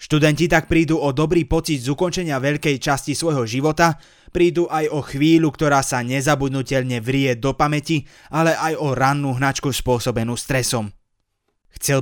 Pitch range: 125-150 Hz